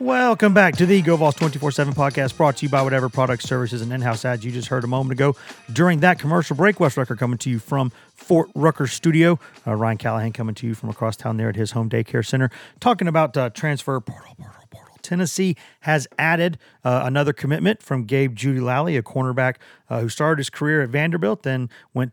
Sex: male